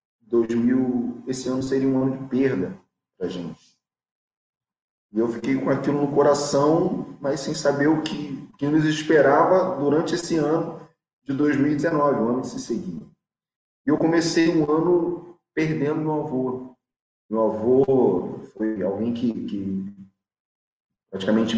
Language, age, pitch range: Portuguese, 30-49, 105-145 Hz